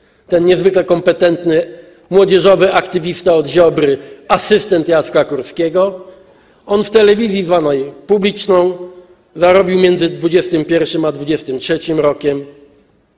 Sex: male